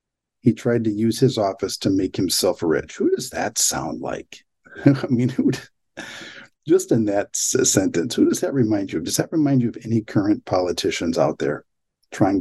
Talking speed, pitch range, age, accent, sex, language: 200 wpm, 100-125 Hz, 50-69, American, male, English